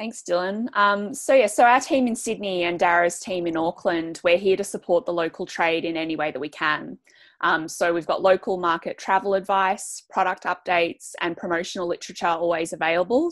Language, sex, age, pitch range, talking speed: English, female, 20-39, 160-190 Hz, 195 wpm